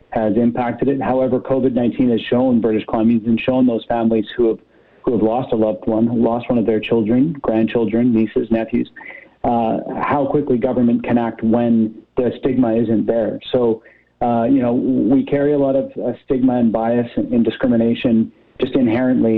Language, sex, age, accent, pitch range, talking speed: English, male, 40-59, American, 110-125 Hz, 175 wpm